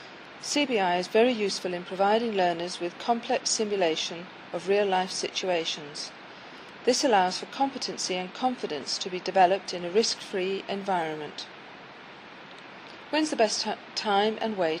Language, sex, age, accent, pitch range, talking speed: English, female, 40-59, British, 180-225 Hz, 130 wpm